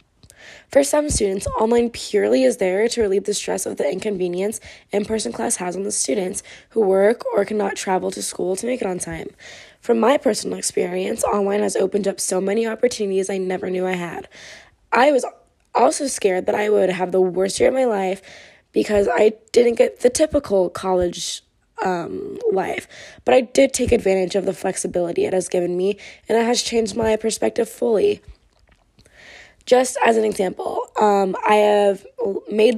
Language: English